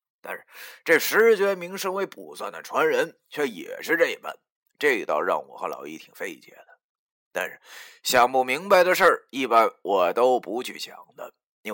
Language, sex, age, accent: Chinese, male, 20-39, native